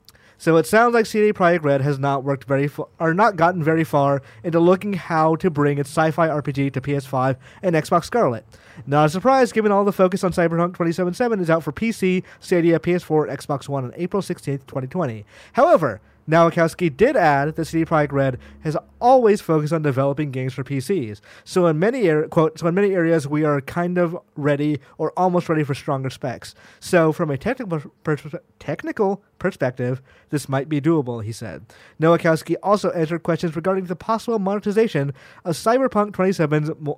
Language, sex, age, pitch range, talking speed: English, male, 30-49, 140-175 Hz, 175 wpm